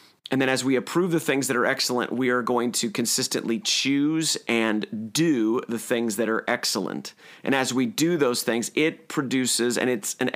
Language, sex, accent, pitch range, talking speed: English, male, American, 115-130 Hz, 195 wpm